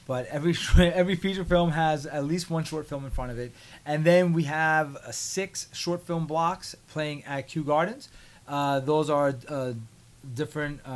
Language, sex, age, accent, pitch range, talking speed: English, male, 30-49, American, 130-155 Hz, 175 wpm